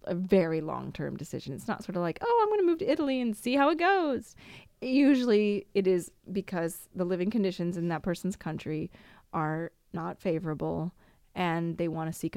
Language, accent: English, American